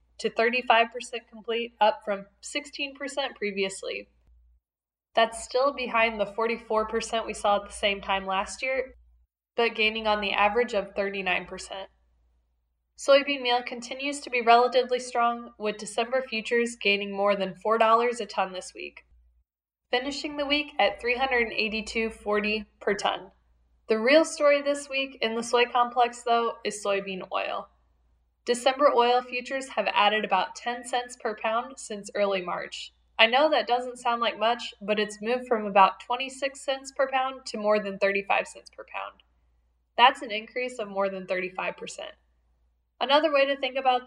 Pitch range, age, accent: 195-250 Hz, 10-29, American